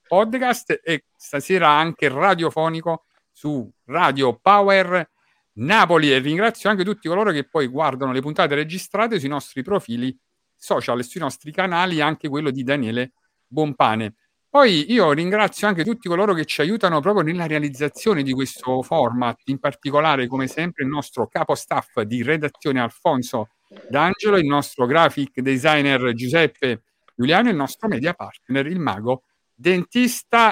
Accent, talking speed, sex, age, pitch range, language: native, 145 wpm, male, 50-69, 140-195 Hz, Italian